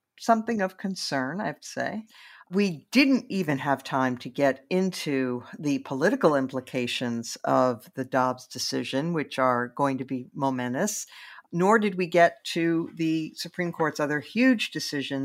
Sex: female